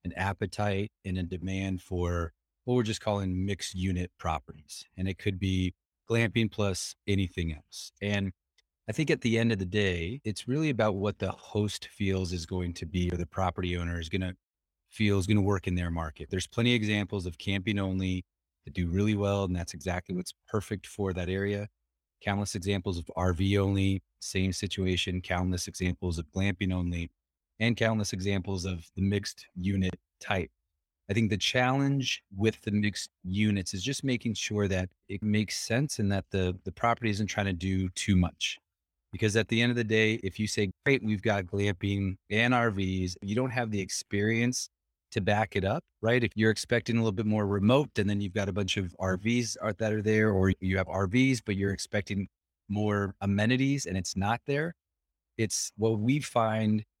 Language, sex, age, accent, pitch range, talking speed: English, male, 30-49, American, 90-110 Hz, 195 wpm